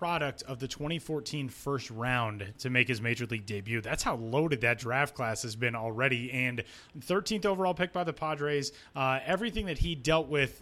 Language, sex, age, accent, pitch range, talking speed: English, male, 30-49, American, 125-155 Hz, 190 wpm